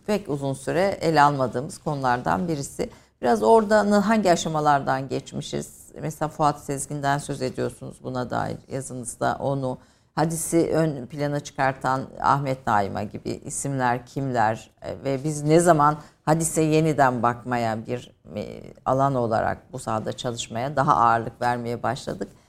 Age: 50-69